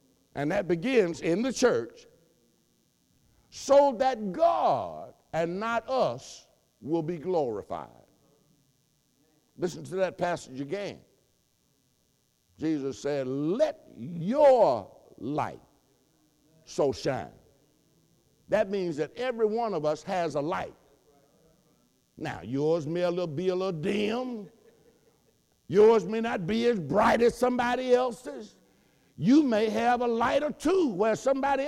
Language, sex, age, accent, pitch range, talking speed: English, male, 60-79, American, 175-275 Hz, 120 wpm